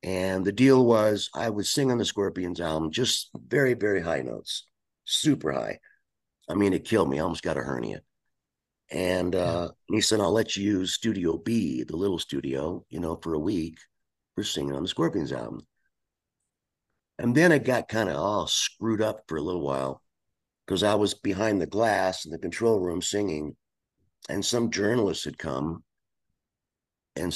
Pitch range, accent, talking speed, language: 75-110 Hz, American, 180 wpm, English